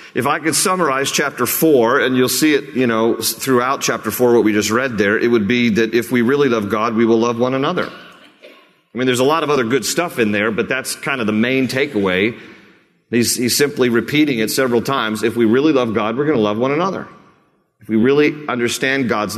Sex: male